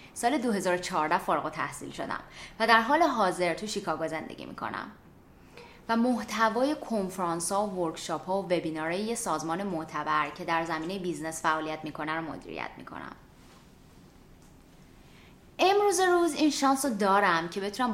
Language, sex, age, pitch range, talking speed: Persian, female, 20-39, 165-225 Hz, 145 wpm